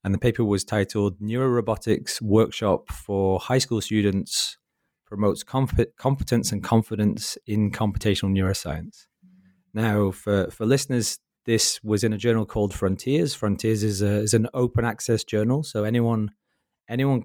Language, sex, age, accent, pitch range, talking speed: English, male, 20-39, British, 95-110 Hz, 145 wpm